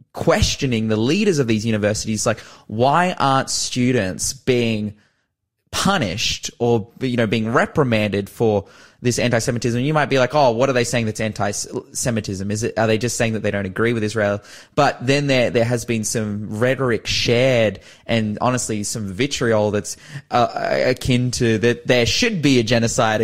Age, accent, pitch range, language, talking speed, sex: 20-39, Australian, 110-140 Hz, English, 175 wpm, male